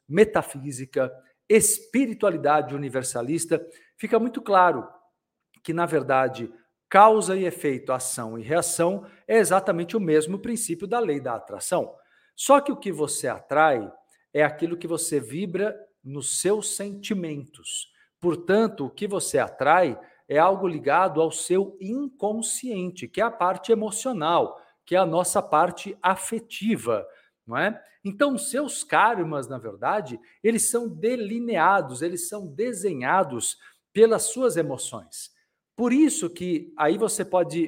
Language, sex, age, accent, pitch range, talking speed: Portuguese, male, 50-69, Brazilian, 160-220 Hz, 130 wpm